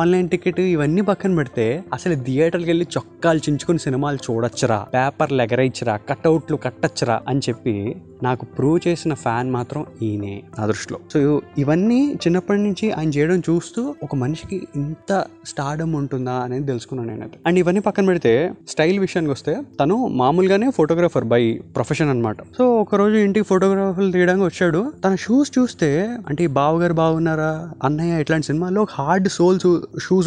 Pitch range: 130-185 Hz